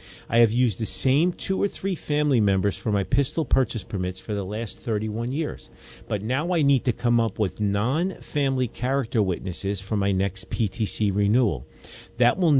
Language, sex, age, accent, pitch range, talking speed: English, male, 50-69, American, 100-130 Hz, 180 wpm